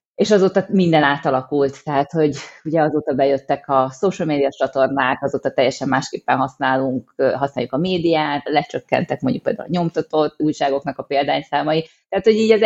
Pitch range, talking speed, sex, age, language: 140-170 Hz, 150 wpm, female, 30-49, Hungarian